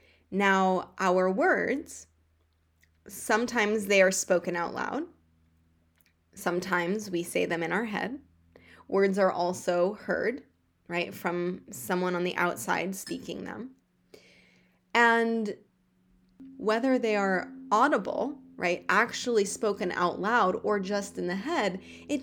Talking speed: 120 wpm